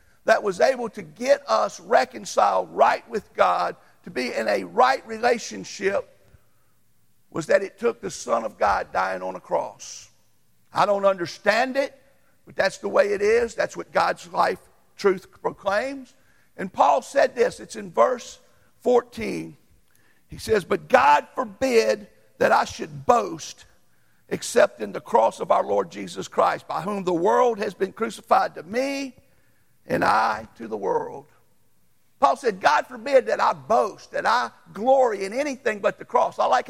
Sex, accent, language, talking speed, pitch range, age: male, American, English, 165 wpm, 195-280 Hz, 50-69